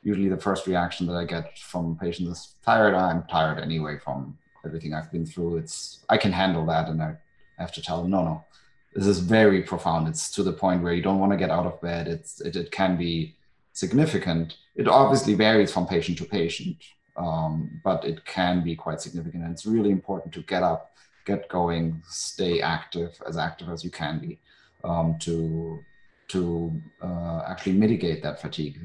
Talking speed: 195 wpm